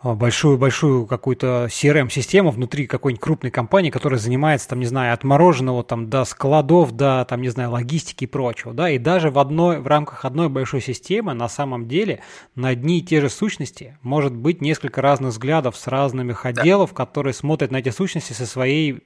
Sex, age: male, 20-39